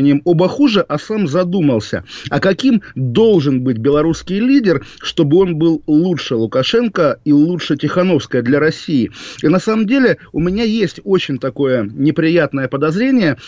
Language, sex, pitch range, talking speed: Russian, male, 135-170 Hz, 140 wpm